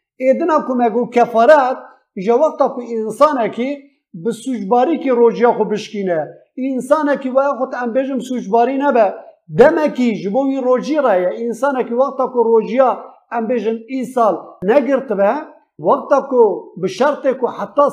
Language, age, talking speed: Turkish, 50-69, 65 wpm